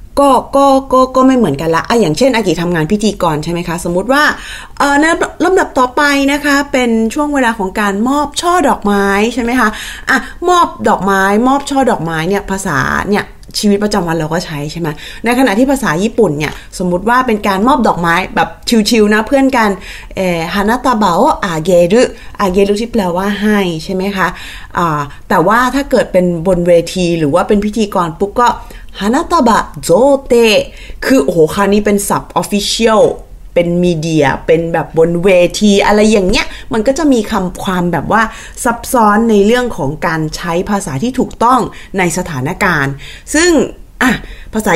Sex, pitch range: female, 175-245 Hz